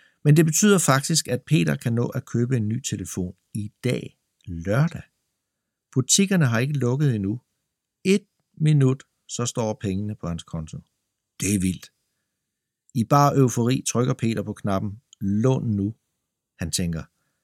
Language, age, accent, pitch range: Danish, 60-79, native, 100-145 Hz